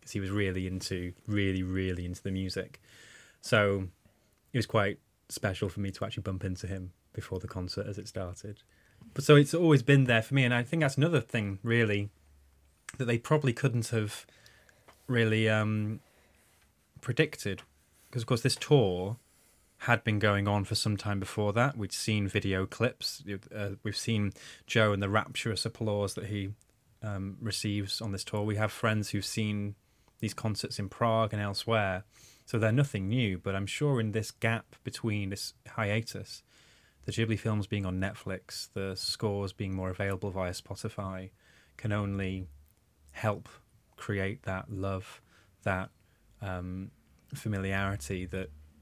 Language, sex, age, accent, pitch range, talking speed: English, male, 20-39, British, 95-115 Hz, 160 wpm